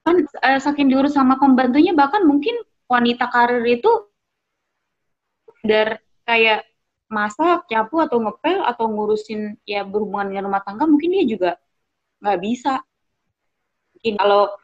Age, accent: 20-39, native